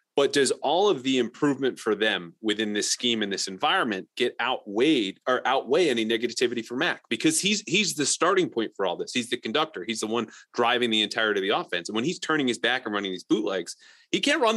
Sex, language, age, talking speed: male, English, 30-49, 230 wpm